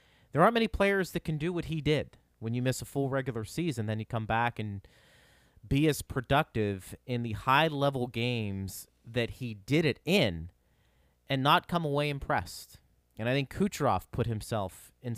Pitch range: 110-155 Hz